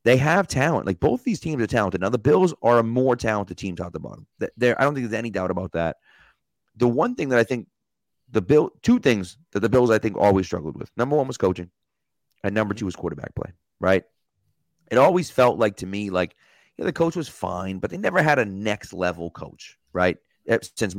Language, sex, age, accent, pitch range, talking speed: English, male, 30-49, American, 95-115 Hz, 230 wpm